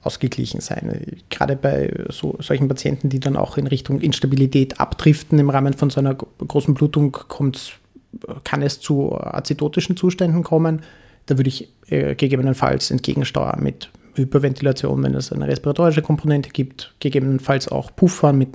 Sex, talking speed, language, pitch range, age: male, 140 wpm, German, 120-150 Hz, 30-49